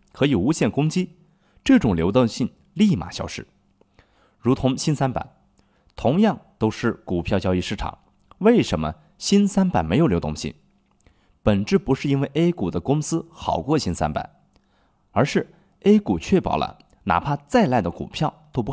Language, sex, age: Chinese, male, 20-39